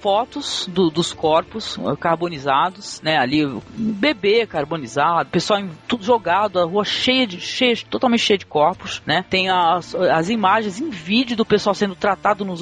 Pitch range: 170-245 Hz